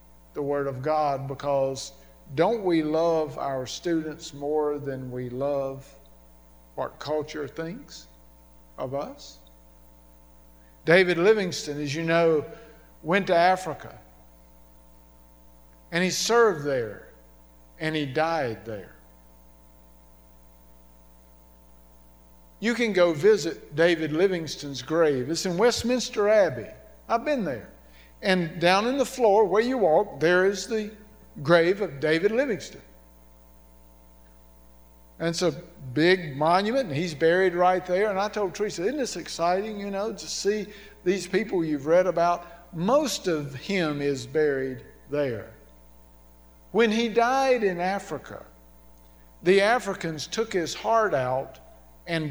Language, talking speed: English, 125 wpm